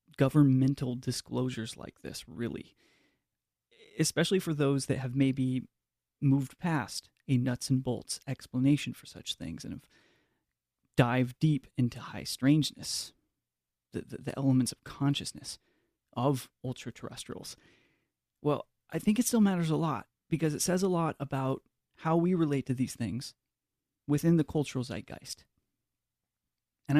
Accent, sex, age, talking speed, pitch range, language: American, male, 30-49, 135 wpm, 125-145 Hz, English